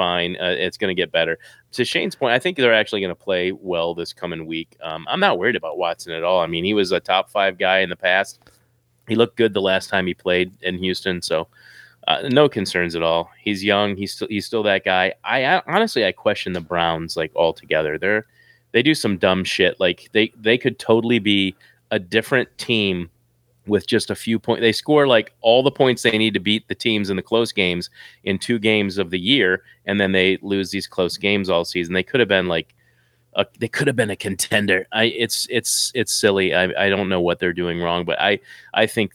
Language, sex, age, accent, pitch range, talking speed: English, male, 30-49, American, 85-110 Hz, 235 wpm